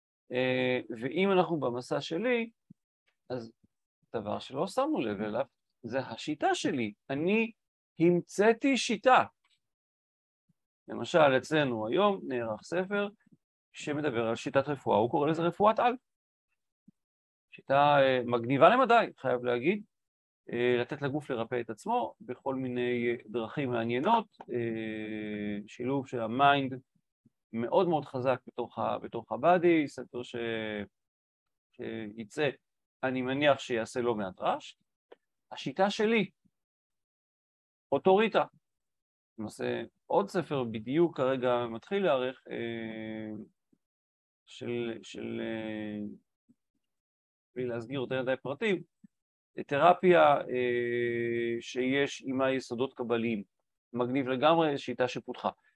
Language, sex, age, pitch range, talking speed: Hebrew, male, 40-59, 115-165 Hz, 90 wpm